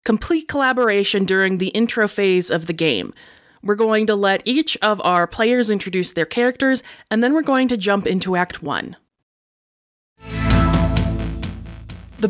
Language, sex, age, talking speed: English, female, 20-39, 145 wpm